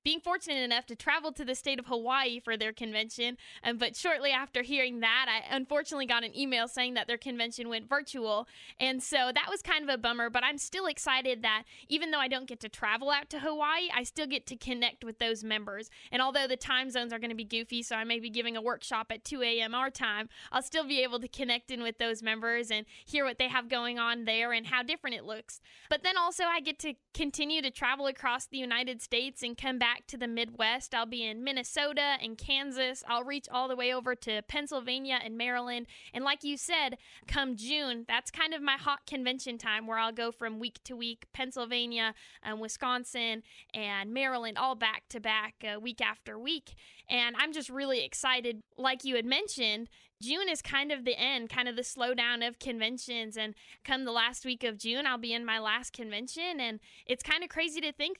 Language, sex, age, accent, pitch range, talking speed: English, female, 20-39, American, 230-270 Hz, 220 wpm